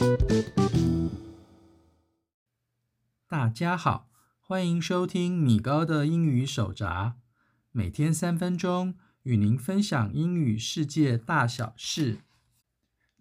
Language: Chinese